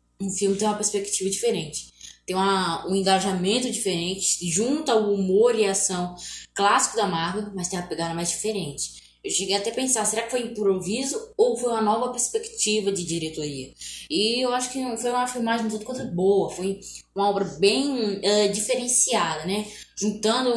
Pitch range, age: 185-230 Hz, 10-29